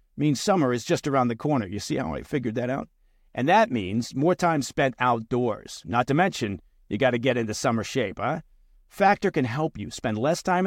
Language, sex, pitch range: English, male, 115-175 Hz